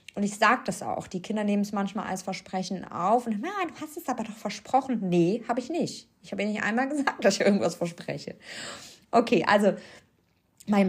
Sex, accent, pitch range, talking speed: female, German, 195-245 Hz, 210 wpm